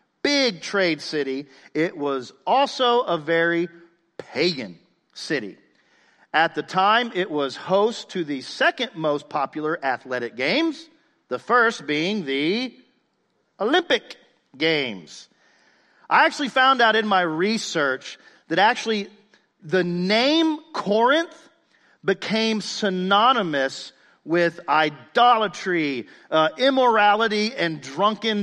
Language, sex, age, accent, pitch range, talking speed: English, male, 40-59, American, 150-235 Hz, 105 wpm